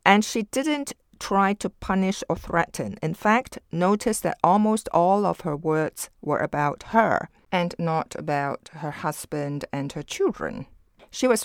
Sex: female